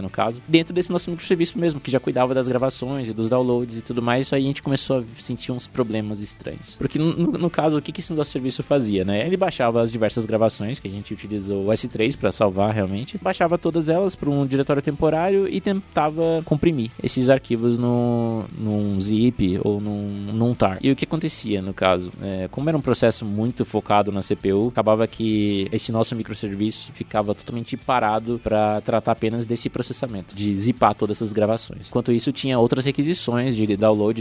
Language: Portuguese